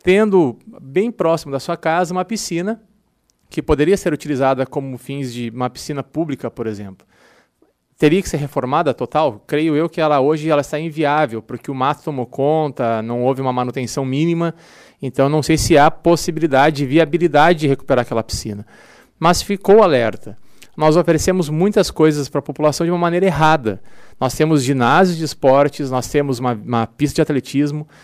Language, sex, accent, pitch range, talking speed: Portuguese, male, Brazilian, 130-170 Hz, 170 wpm